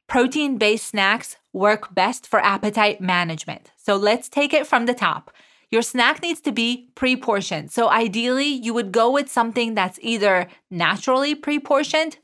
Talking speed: 150 wpm